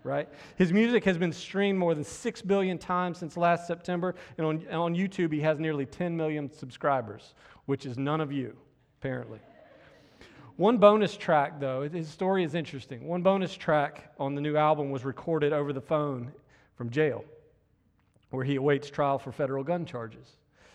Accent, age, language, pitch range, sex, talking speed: American, 40-59, English, 135-165 Hz, male, 175 wpm